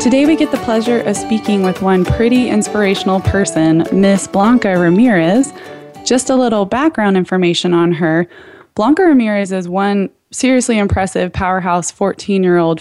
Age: 20-39